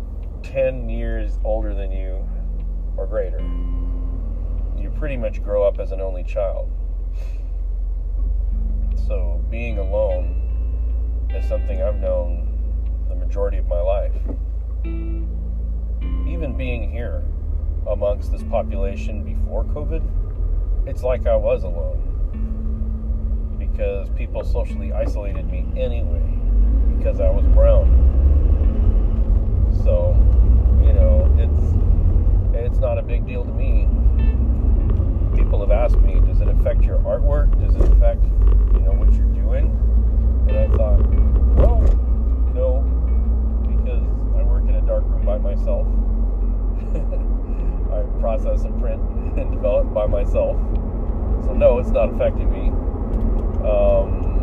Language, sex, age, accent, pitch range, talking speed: English, male, 40-59, American, 75-90 Hz, 115 wpm